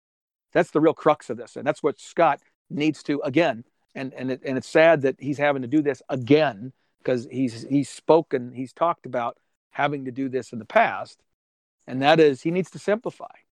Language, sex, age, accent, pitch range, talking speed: English, male, 50-69, American, 130-155 Hz, 210 wpm